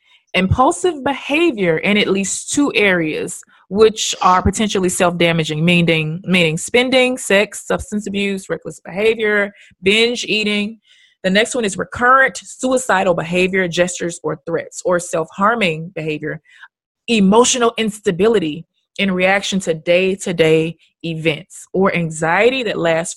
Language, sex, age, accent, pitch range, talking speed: English, female, 20-39, American, 170-215 Hz, 115 wpm